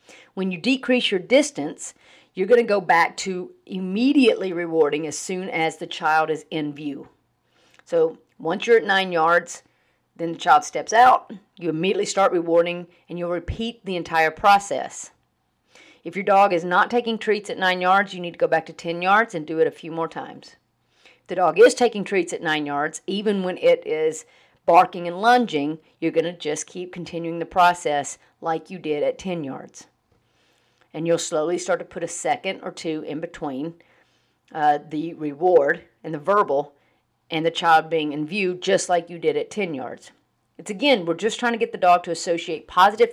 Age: 40-59